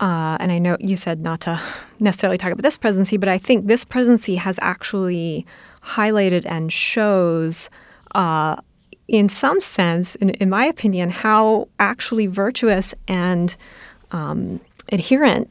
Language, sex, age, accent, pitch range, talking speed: English, female, 30-49, American, 185-230 Hz, 145 wpm